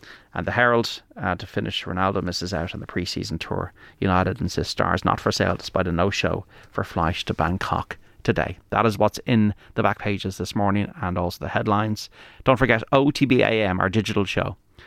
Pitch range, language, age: 95-110 Hz, English, 30-49